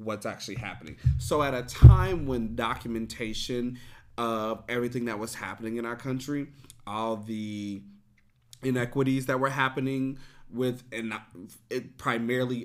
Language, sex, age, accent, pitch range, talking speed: English, male, 30-49, American, 110-130 Hz, 125 wpm